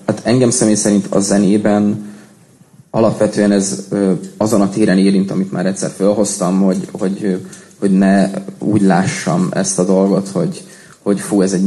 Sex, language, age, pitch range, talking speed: male, Hungarian, 20-39, 95-110 Hz, 160 wpm